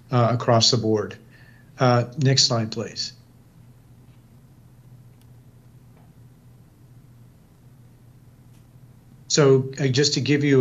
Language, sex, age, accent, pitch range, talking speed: English, male, 40-59, American, 120-130 Hz, 80 wpm